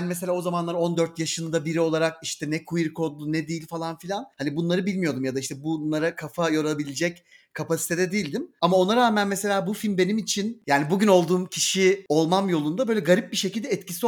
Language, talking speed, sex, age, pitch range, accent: Turkish, 195 wpm, male, 40-59, 160-200 Hz, native